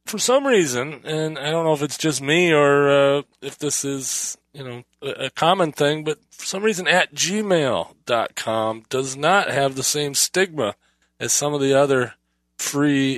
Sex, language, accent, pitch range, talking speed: male, English, American, 115-145 Hz, 190 wpm